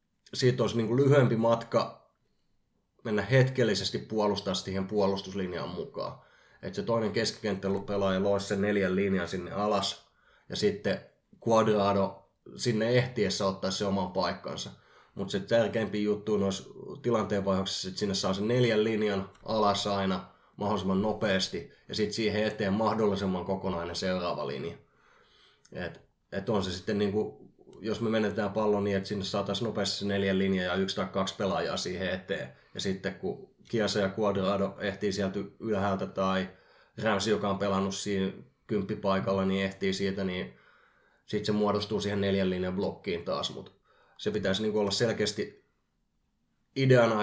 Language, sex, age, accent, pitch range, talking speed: Finnish, male, 20-39, native, 95-105 Hz, 145 wpm